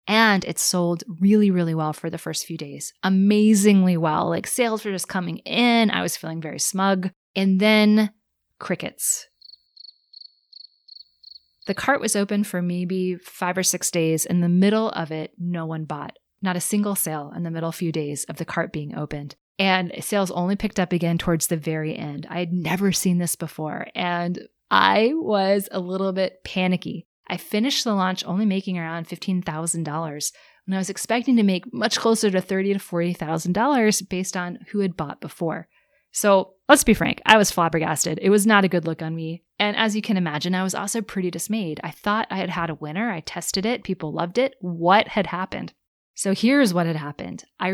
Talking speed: 195 wpm